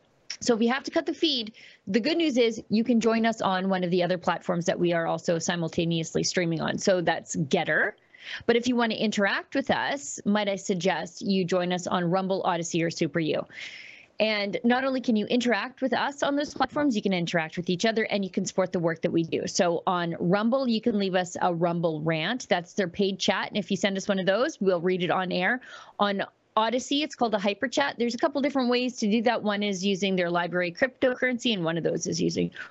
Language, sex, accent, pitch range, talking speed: English, female, American, 185-240 Hz, 240 wpm